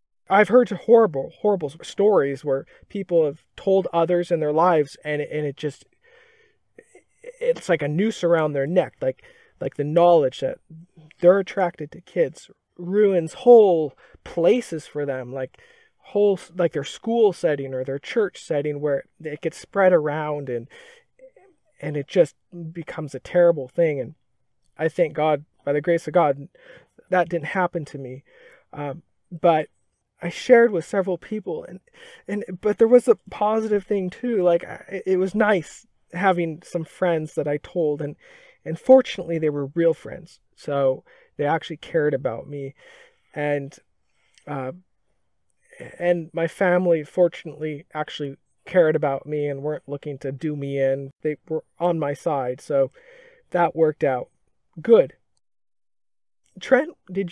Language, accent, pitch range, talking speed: English, American, 150-210 Hz, 150 wpm